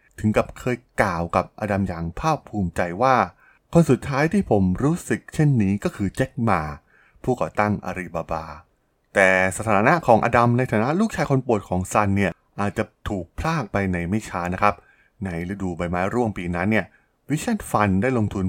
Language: Thai